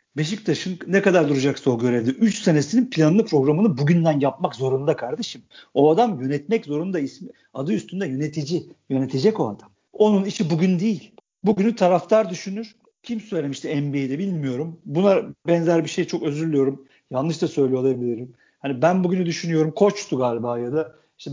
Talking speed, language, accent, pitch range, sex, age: 160 wpm, Turkish, native, 145-200 Hz, male, 50-69